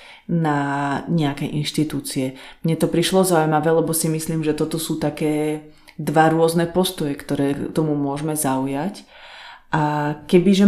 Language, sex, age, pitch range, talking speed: Slovak, female, 30-49, 145-165 Hz, 130 wpm